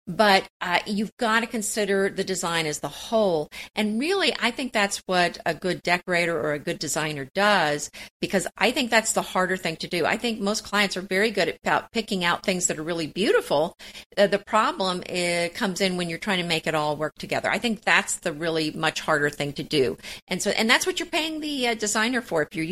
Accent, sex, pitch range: American, female, 165-215 Hz